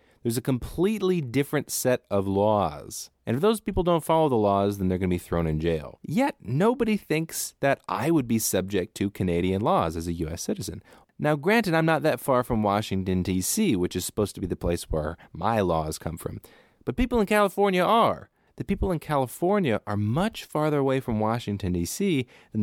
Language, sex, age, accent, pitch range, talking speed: English, male, 30-49, American, 95-140 Hz, 200 wpm